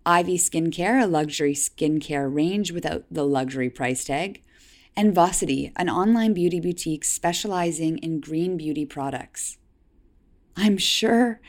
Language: English